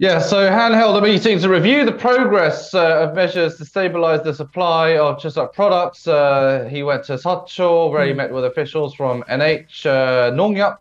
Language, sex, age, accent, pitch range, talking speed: English, male, 20-39, British, 130-170 Hz, 190 wpm